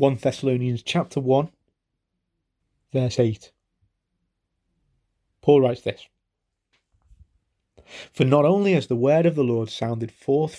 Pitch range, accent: 115-150 Hz, British